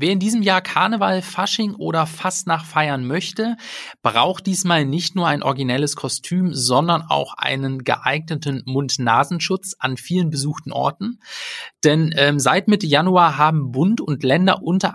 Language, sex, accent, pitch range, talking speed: German, male, German, 135-175 Hz, 150 wpm